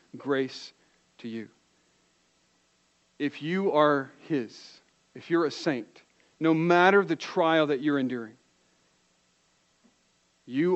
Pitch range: 125-160 Hz